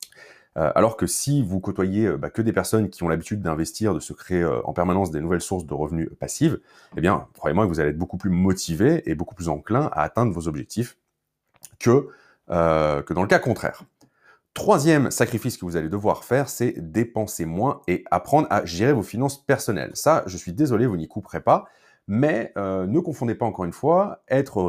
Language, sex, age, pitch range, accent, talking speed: French, male, 30-49, 85-120 Hz, French, 200 wpm